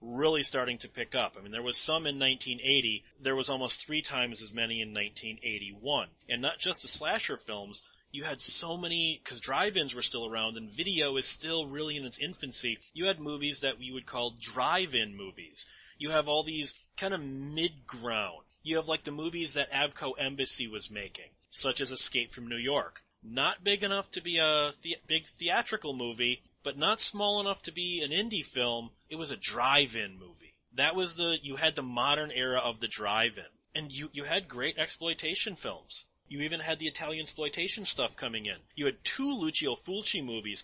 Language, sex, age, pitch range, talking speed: English, male, 30-49, 120-160 Hz, 195 wpm